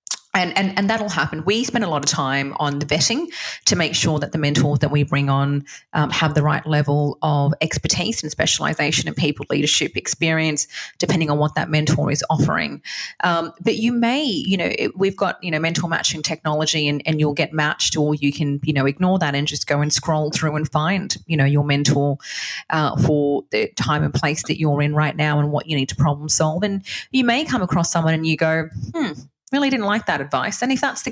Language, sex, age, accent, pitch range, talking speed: English, female, 30-49, Australian, 145-175 Hz, 230 wpm